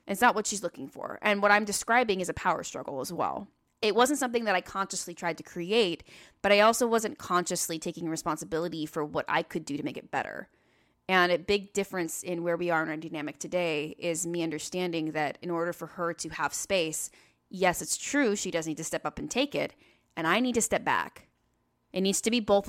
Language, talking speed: English, 230 wpm